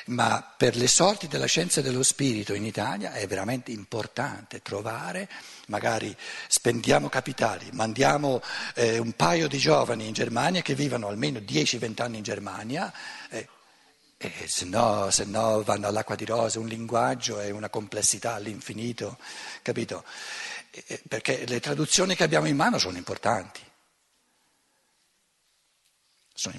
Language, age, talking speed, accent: Italian, 60-79, 135 wpm, native